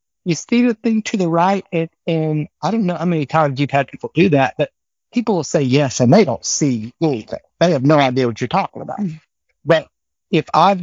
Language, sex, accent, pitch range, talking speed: English, male, American, 120-150 Hz, 225 wpm